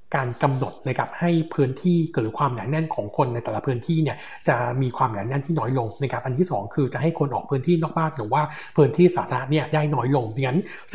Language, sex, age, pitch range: Thai, male, 60-79, 125-155 Hz